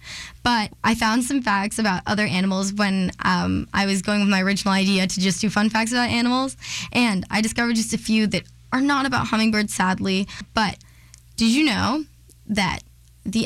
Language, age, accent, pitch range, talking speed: English, 10-29, American, 190-240 Hz, 185 wpm